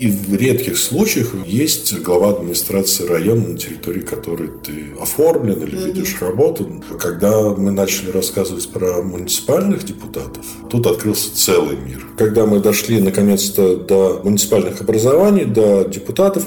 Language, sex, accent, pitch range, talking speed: Russian, male, native, 95-115 Hz, 130 wpm